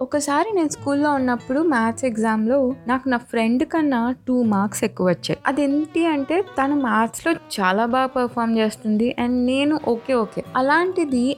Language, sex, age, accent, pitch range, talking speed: Telugu, female, 20-39, native, 210-285 Hz, 150 wpm